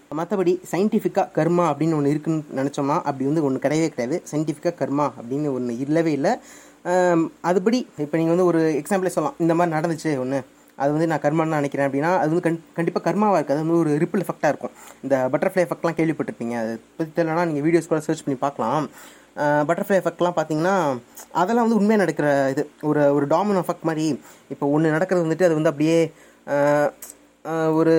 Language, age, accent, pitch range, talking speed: Tamil, 20-39, native, 140-170 Hz, 175 wpm